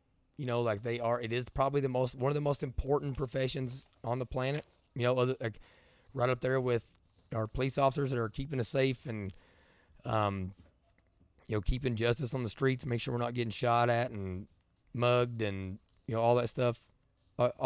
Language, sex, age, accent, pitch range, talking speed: English, male, 30-49, American, 105-130 Hz, 200 wpm